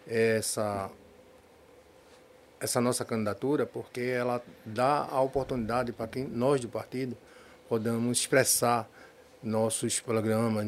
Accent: Brazilian